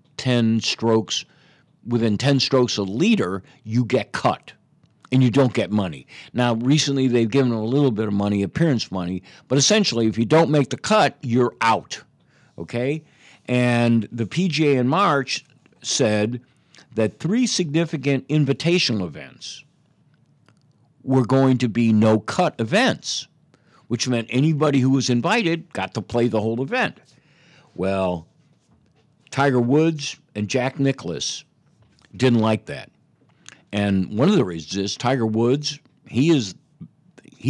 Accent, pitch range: American, 110-140 Hz